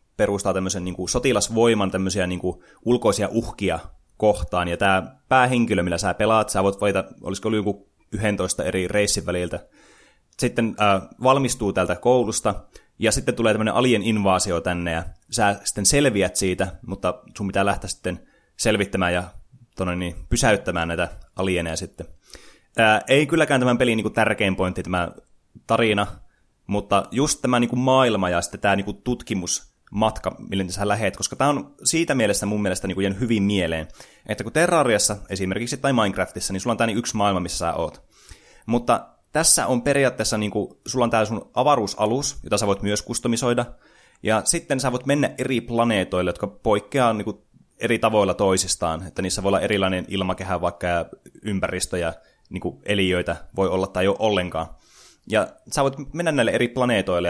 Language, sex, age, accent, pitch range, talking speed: Finnish, male, 20-39, native, 90-115 Hz, 170 wpm